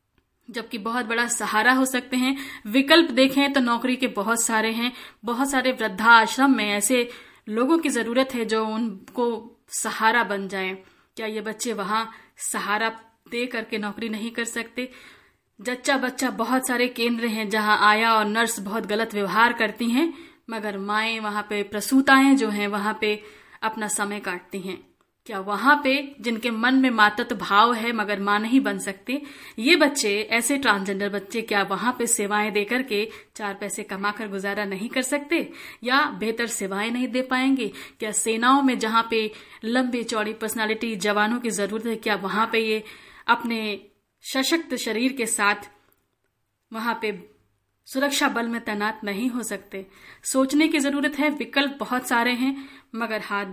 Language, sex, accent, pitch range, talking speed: Hindi, female, native, 210-250 Hz, 165 wpm